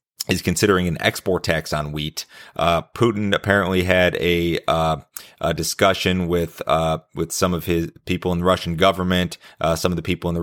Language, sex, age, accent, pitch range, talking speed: English, male, 30-49, American, 80-95 Hz, 190 wpm